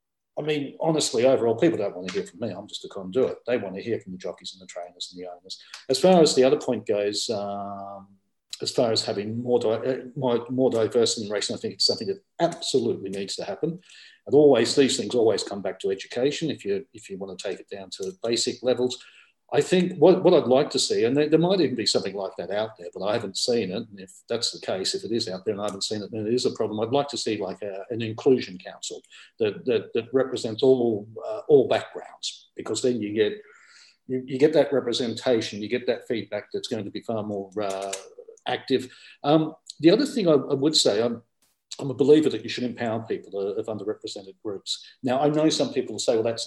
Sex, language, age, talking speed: male, English, 40-59, 245 wpm